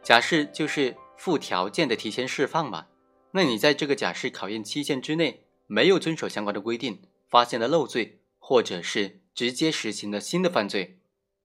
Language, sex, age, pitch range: Chinese, male, 30-49, 110-160 Hz